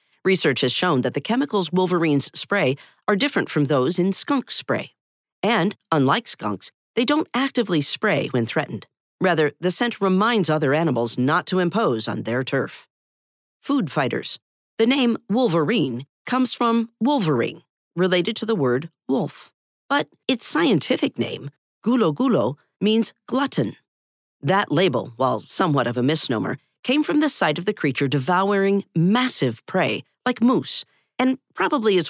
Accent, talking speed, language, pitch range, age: American, 145 wpm, English, 145-225 Hz, 40-59